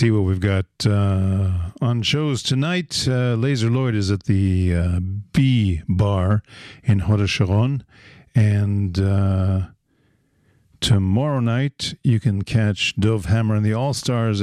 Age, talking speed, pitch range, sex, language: 50-69, 135 wpm, 95-120 Hz, male, English